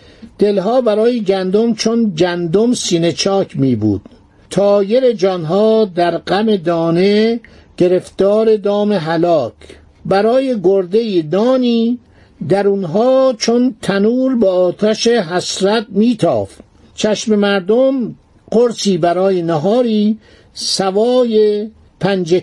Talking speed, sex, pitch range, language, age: 90 wpm, male, 185-230 Hz, Persian, 60-79